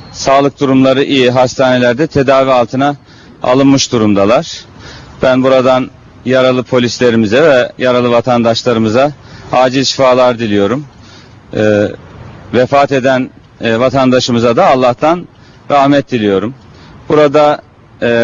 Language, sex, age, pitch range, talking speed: Turkish, male, 40-59, 115-130 Hz, 95 wpm